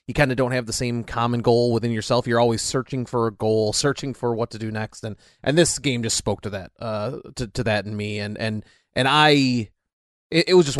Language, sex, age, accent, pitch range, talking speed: English, male, 30-49, American, 115-150 Hz, 250 wpm